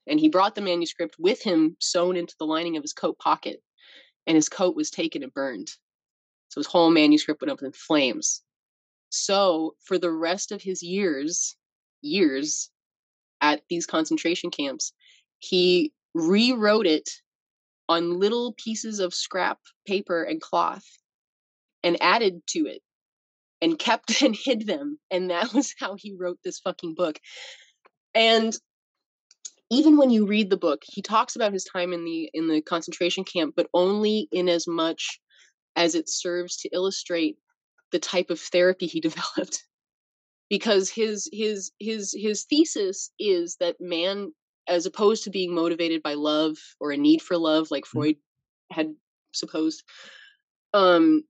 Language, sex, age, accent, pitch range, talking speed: English, female, 20-39, American, 165-220 Hz, 155 wpm